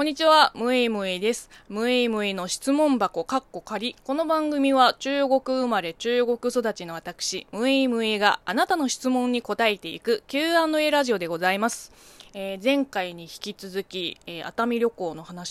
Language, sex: Japanese, female